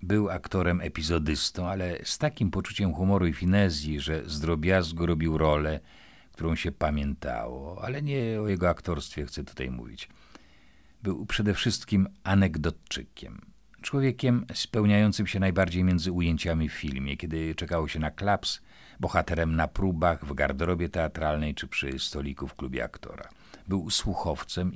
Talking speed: 140 wpm